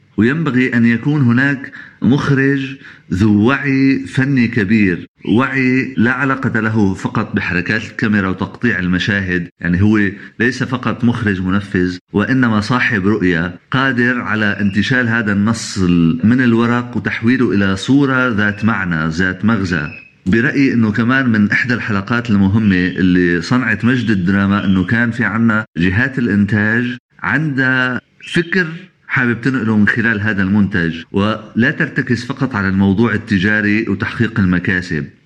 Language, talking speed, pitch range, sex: Arabic, 125 wpm, 100-125 Hz, male